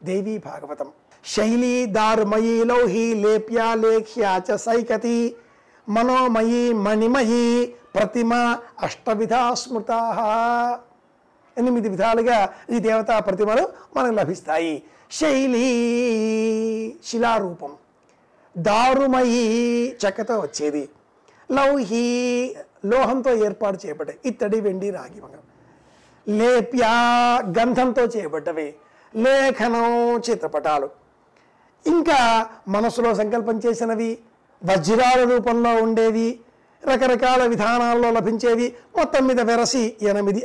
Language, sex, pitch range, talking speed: Telugu, male, 215-245 Hz, 75 wpm